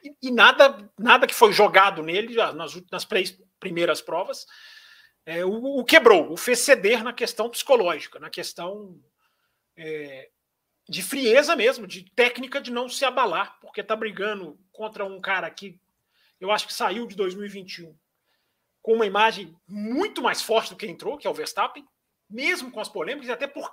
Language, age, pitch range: Portuguese, 40-59, 190-275 Hz